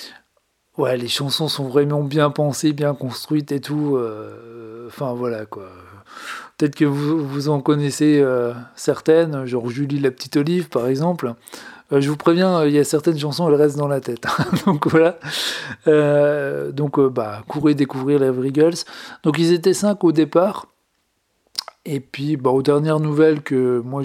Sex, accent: male, French